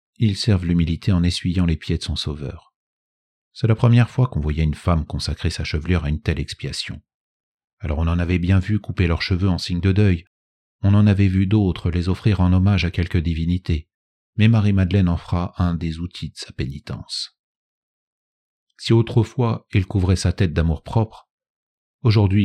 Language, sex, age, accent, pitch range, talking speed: French, male, 40-59, French, 85-105 Hz, 185 wpm